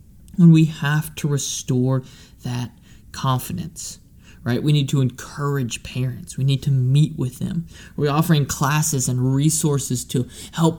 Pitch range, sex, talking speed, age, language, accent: 135-170 Hz, male, 145 wpm, 20-39, English, American